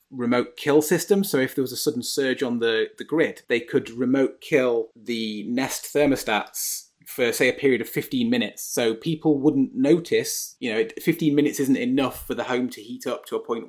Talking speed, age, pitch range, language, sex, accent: 205 wpm, 30-49, 125-165 Hz, English, male, British